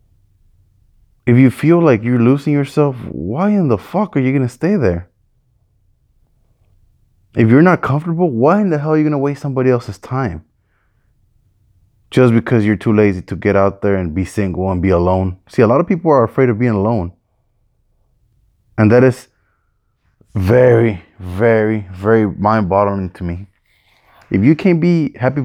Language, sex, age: English, male, 20-39